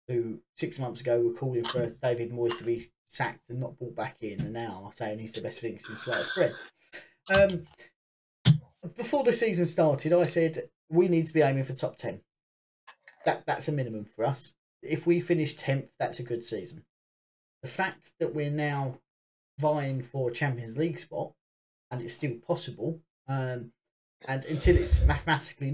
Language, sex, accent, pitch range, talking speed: English, male, British, 120-165 Hz, 180 wpm